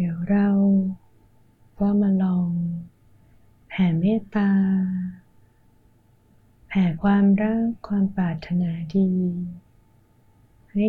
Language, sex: Thai, female